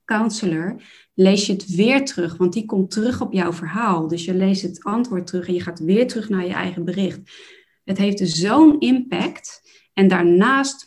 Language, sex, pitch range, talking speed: Dutch, female, 185-225 Hz, 190 wpm